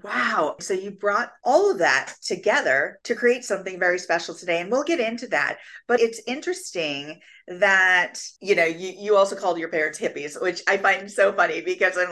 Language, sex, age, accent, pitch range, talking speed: English, female, 40-59, American, 170-230 Hz, 195 wpm